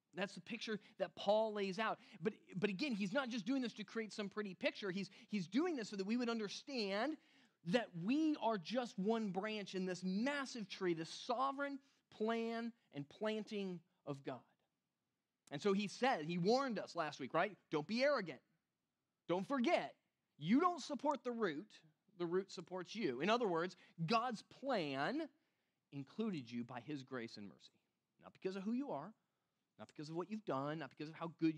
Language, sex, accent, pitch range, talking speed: English, male, American, 165-230 Hz, 190 wpm